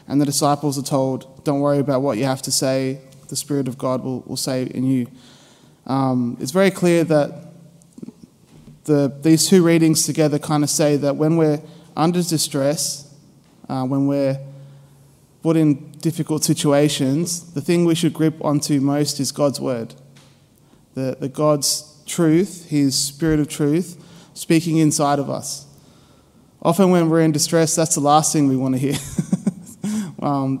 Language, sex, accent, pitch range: English, male, Australian, 140-160 Hz